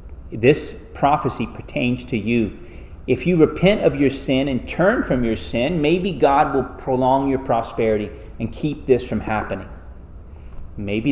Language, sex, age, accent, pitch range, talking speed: English, male, 30-49, American, 90-130 Hz, 150 wpm